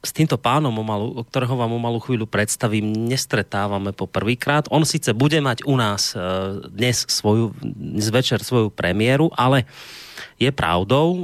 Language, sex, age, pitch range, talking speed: Slovak, male, 30-49, 100-125 Hz, 130 wpm